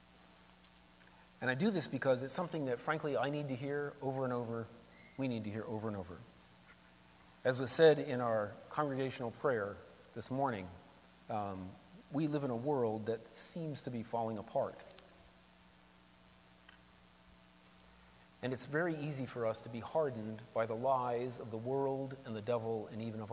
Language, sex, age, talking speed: English, male, 40-59, 165 wpm